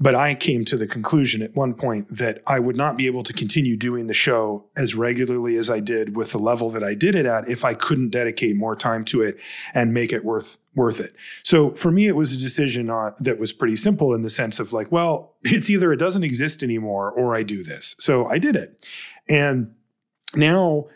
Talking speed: 230 wpm